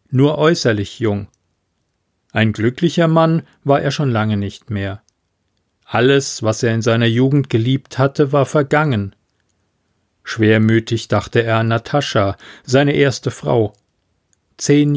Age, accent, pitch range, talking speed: 40-59, German, 110-165 Hz, 125 wpm